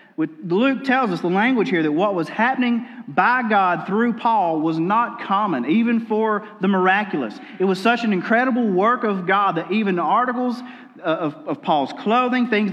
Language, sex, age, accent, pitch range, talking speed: English, male, 40-59, American, 175-240 Hz, 185 wpm